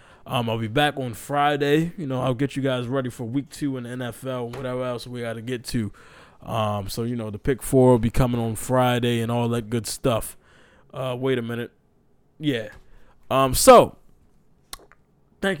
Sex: male